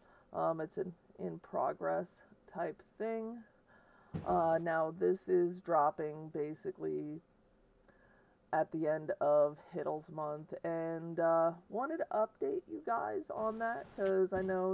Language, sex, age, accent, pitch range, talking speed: English, female, 40-59, American, 160-200 Hz, 120 wpm